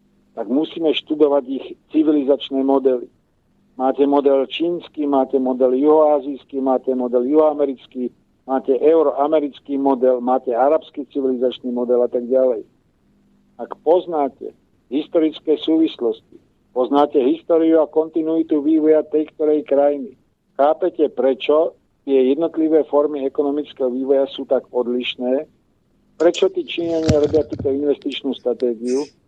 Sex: male